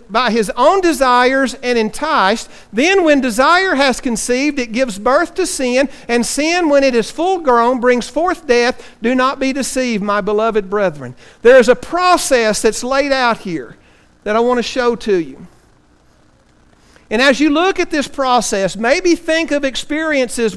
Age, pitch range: 50-69, 225-295 Hz